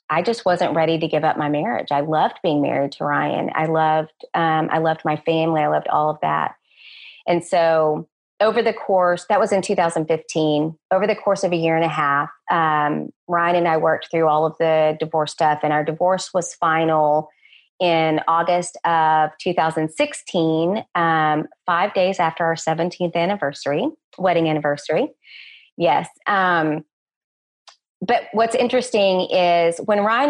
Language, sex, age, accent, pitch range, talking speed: English, female, 30-49, American, 155-190 Hz, 160 wpm